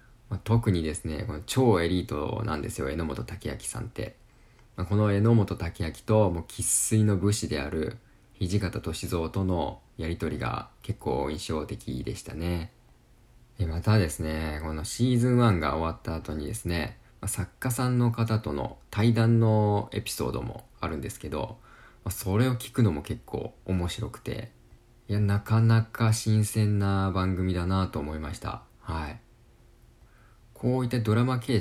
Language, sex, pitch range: Japanese, male, 85-110 Hz